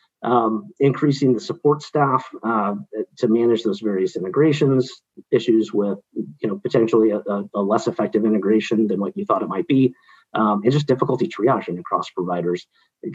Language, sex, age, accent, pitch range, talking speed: English, male, 40-59, American, 110-150 Hz, 165 wpm